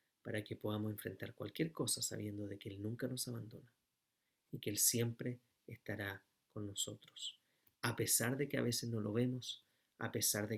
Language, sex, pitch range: Spanish, male, 115-140 Hz